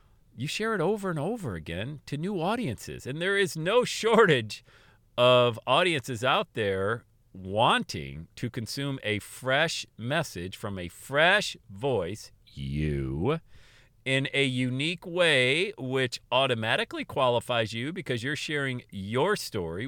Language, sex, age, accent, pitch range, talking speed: English, male, 40-59, American, 105-150 Hz, 130 wpm